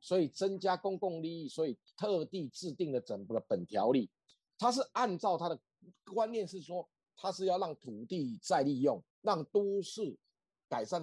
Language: Chinese